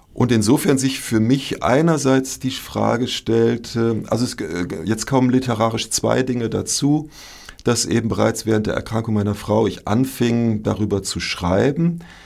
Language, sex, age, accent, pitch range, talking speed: German, male, 50-69, German, 105-125 Hz, 140 wpm